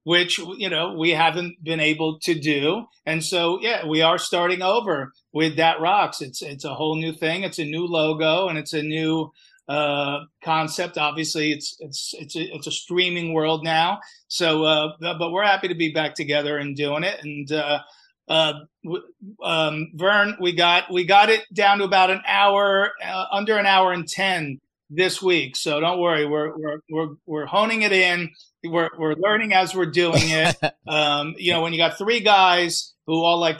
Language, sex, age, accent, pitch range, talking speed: English, male, 40-59, American, 150-175 Hz, 195 wpm